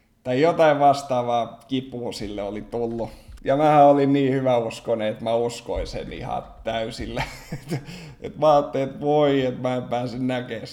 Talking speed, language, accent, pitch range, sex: 155 wpm, Finnish, native, 115-140 Hz, male